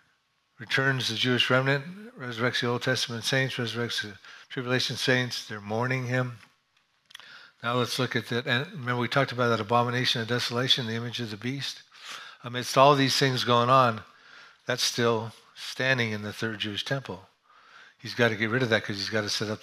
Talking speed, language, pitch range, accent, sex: 185 wpm, English, 110-125 Hz, American, male